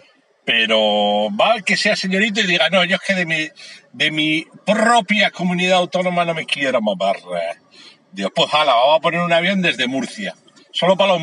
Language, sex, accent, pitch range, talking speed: Spanish, male, Spanish, 140-210 Hz, 185 wpm